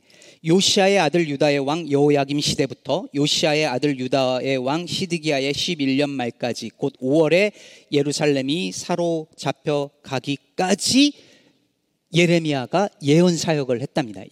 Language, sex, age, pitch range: Korean, male, 40-59, 130-180 Hz